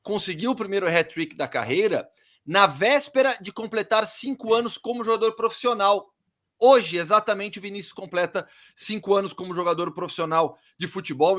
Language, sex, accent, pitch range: Portuguese, male, Brazilian, 155-225 Hz